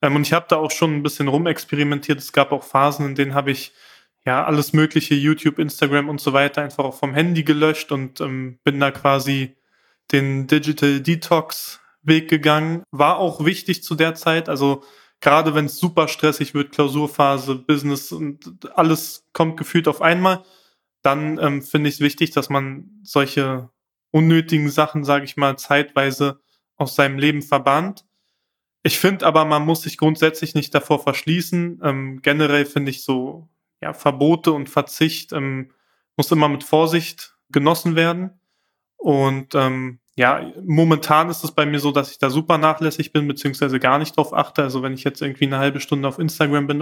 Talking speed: 175 wpm